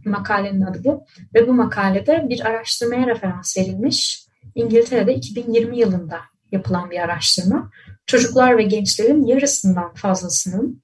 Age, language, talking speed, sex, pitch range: 30-49, Turkish, 115 wpm, female, 185-235 Hz